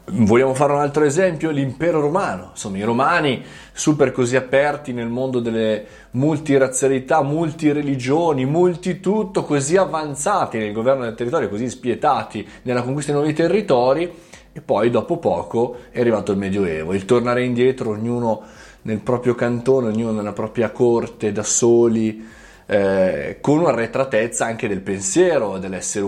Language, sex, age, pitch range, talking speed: Italian, male, 20-39, 115-150 Hz, 140 wpm